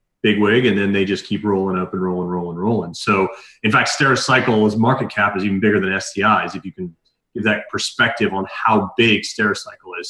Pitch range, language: 100-115 Hz, English